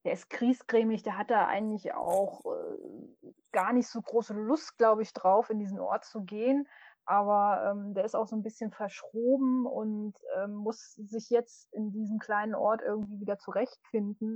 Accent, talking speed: German, 180 wpm